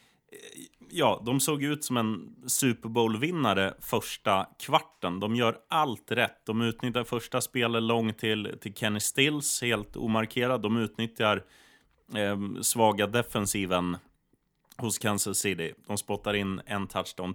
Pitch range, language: 100-125 Hz, Swedish